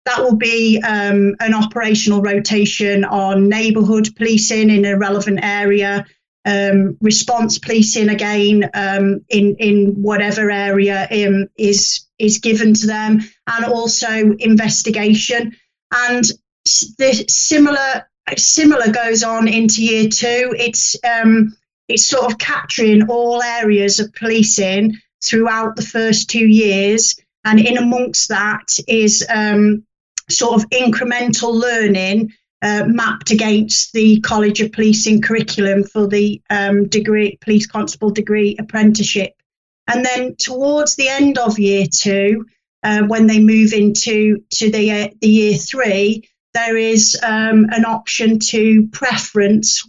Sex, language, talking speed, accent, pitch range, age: female, English, 130 wpm, British, 205-225 Hz, 30-49